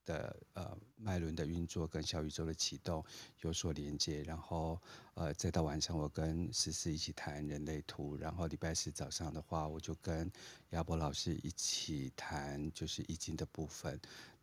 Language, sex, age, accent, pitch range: Chinese, male, 50-69, native, 75-85 Hz